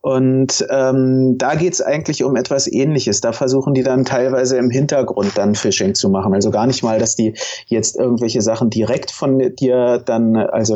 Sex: male